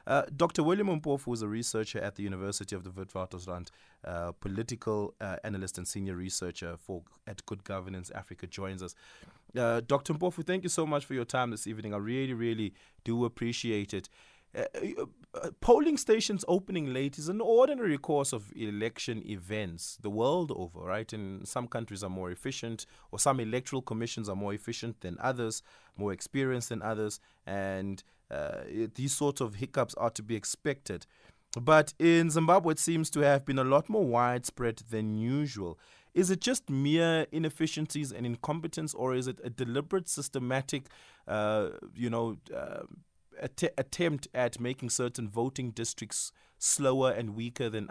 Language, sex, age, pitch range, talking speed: English, male, 20-39, 105-140 Hz, 170 wpm